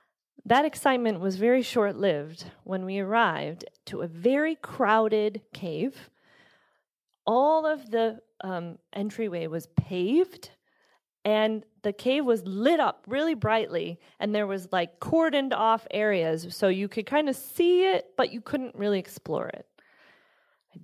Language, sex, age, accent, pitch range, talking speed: English, female, 30-49, American, 185-265 Hz, 140 wpm